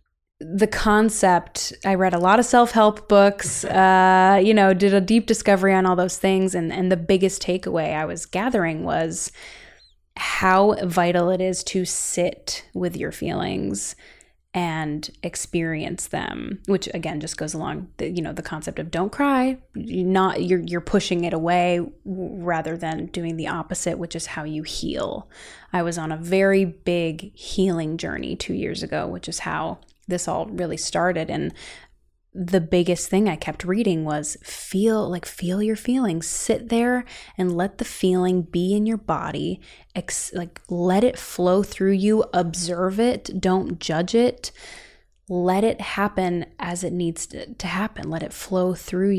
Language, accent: English, American